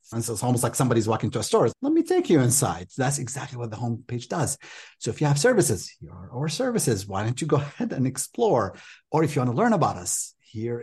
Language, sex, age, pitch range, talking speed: English, male, 30-49, 100-140 Hz, 255 wpm